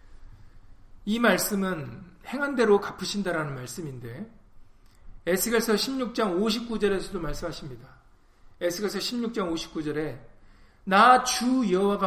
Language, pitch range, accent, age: Korean, 130-210 Hz, native, 40-59